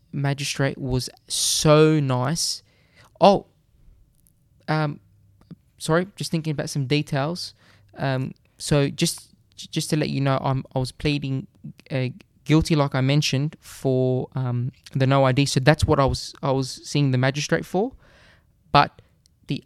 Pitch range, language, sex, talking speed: 130-155 Hz, English, male, 145 wpm